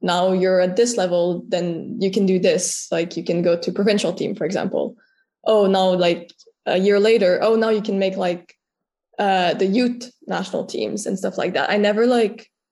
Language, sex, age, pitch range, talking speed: English, female, 20-39, 185-215 Hz, 205 wpm